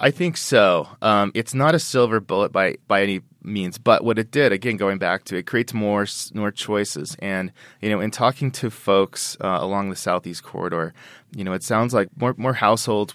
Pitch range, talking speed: 95-115 Hz, 215 wpm